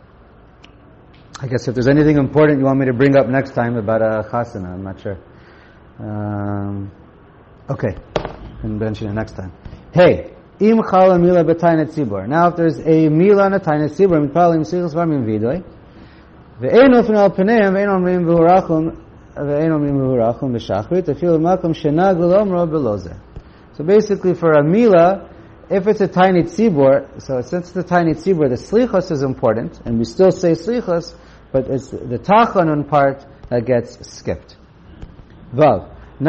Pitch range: 130-185 Hz